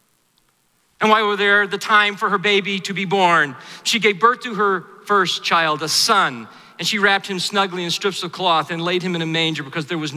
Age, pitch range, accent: 40-59, 165-245 Hz, American